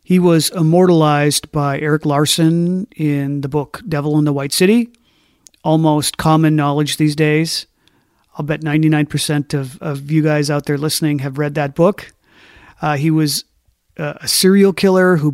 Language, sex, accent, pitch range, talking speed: English, male, American, 145-165 Hz, 160 wpm